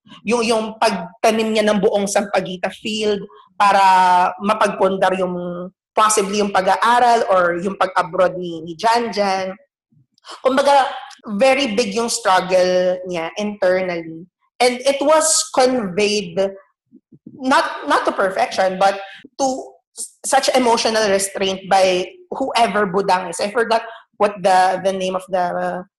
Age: 20-39